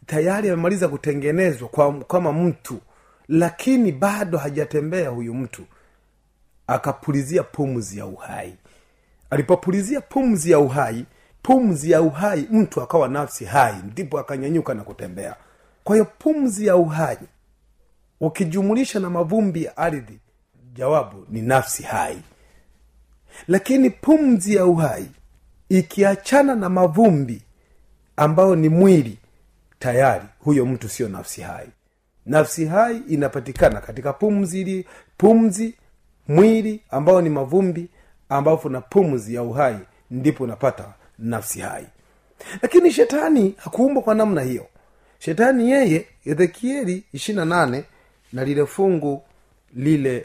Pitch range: 125-195 Hz